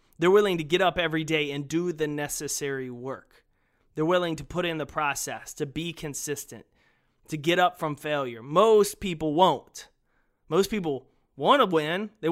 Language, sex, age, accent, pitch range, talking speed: English, male, 30-49, American, 150-190 Hz, 175 wpm